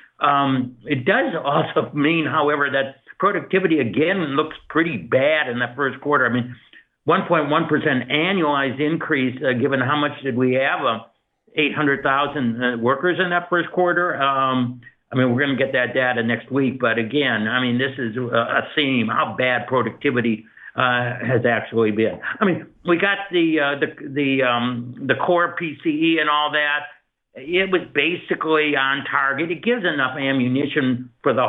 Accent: American